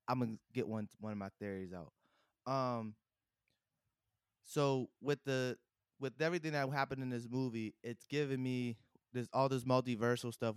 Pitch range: 110-130 Hz